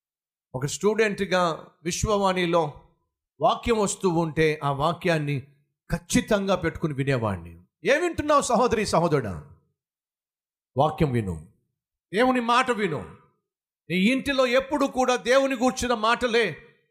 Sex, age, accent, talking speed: male, 50-69, native, 95 wpm